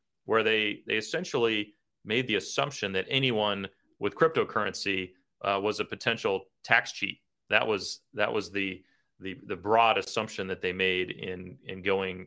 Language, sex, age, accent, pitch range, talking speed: English, male, 30-49, American, 95-120 Hz, 155 wpm